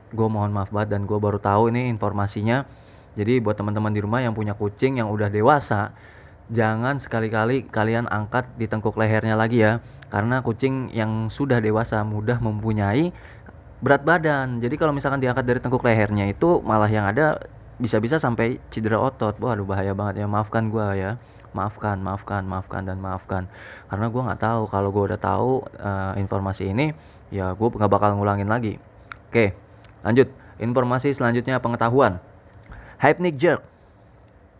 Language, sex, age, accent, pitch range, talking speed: Indonesian, male, 20-39, native, 100-125 Hz, 160 wpm